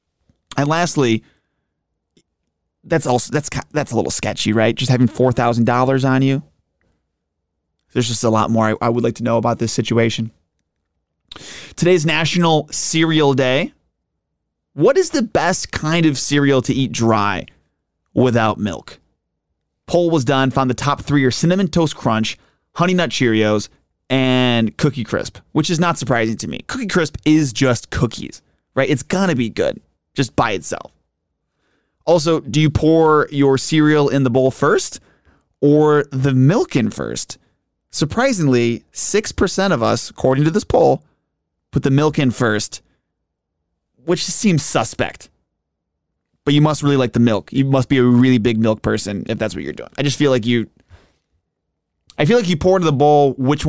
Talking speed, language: 165 wpm, English